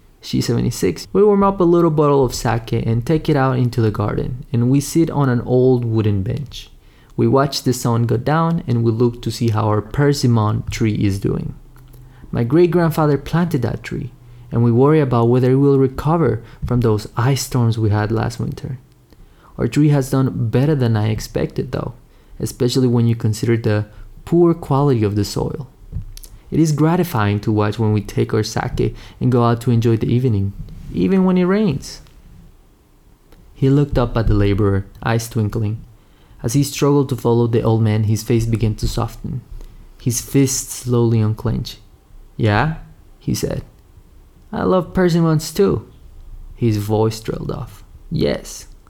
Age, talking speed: 20-39, 175 wpm